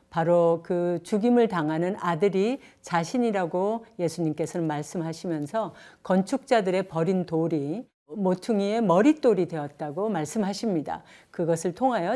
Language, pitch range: Korean, 165-220 Hz